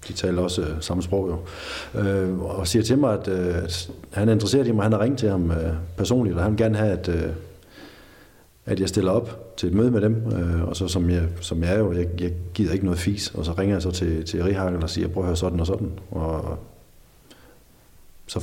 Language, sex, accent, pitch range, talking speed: Danish, male, native, 85-100 Hz, 250 wpm